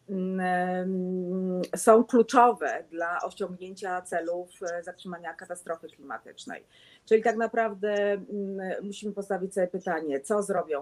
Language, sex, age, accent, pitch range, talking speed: Polish, female, 30-49, native, 170-205 Hz, 95 wpm